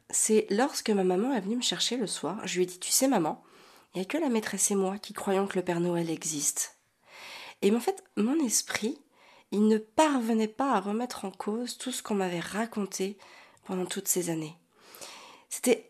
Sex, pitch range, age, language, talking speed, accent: female, 185-250 Hz, 30-49, French, 210 wpm, French